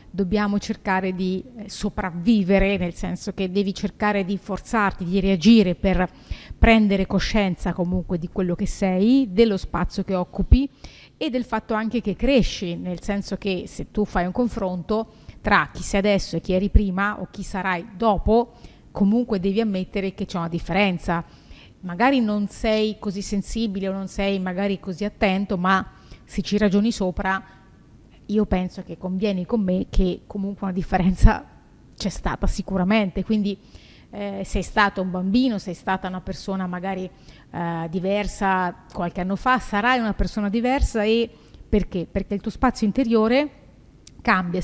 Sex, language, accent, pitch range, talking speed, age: female, Italian, native, 185-220 Hz, 155 wpm, 30-49